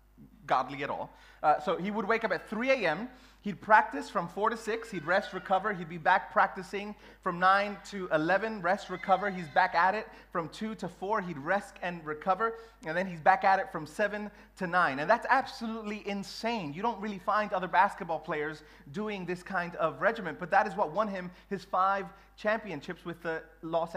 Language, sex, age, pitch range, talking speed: English, male, 30-49, 175-210 Hz, 205 wpm